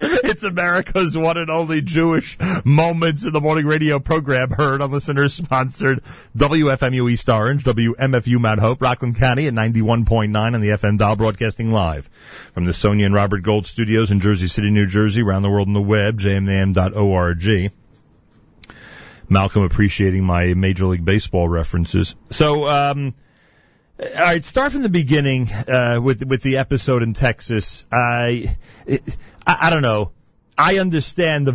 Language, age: English, 40-59